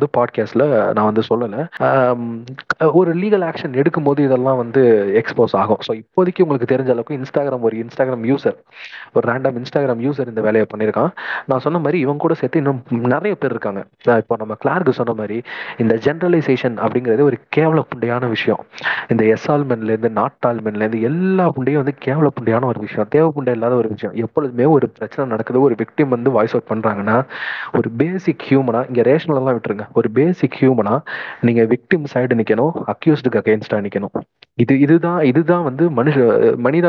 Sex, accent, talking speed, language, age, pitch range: male, native, 35 wpm, Tamil, 30-49, 115-145 Hz